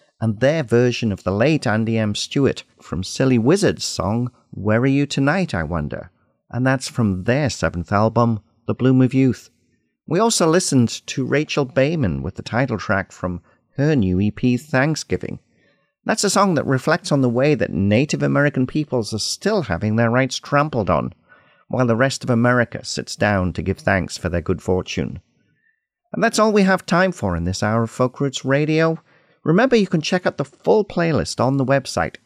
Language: English